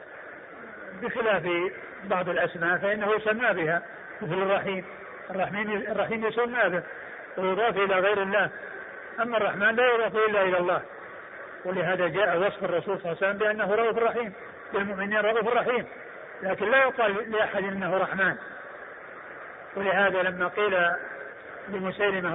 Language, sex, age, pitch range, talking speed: Arabic, male, 50-69, 185-215 Hz, 125 wpm